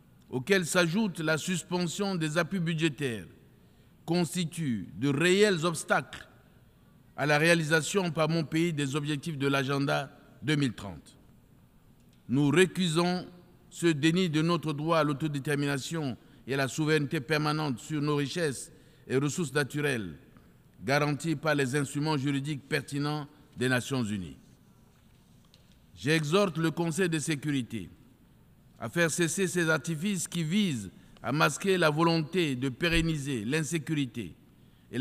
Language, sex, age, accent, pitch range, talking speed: French, male, 50-69, French, 135-170 Hz, 120 wpm